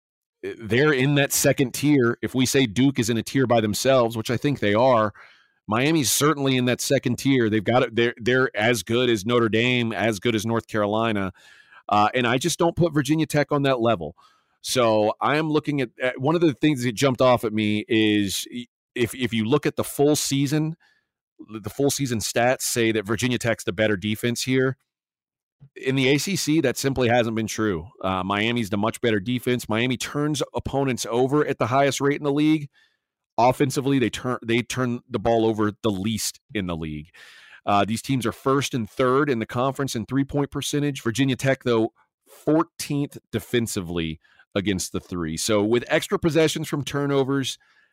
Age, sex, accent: 40-59, male, American